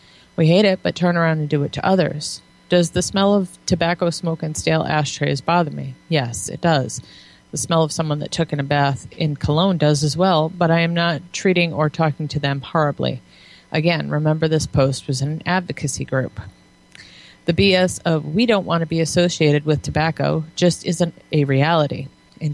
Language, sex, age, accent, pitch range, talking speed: English, female, 30-49, American, 150-175 Hz, 195 wpm